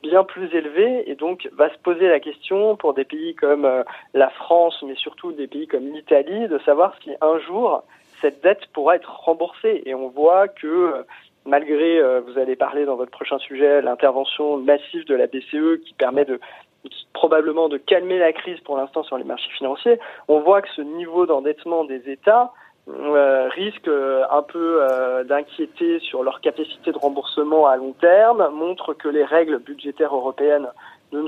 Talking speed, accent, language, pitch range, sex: 180 wpm, French, French, 135-180 Hz, male